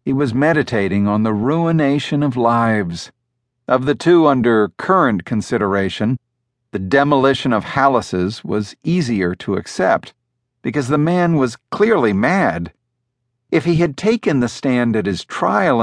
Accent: American